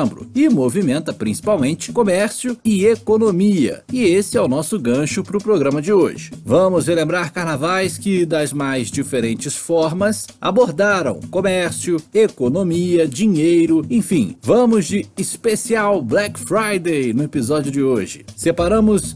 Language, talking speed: Portuguese, 125 wpm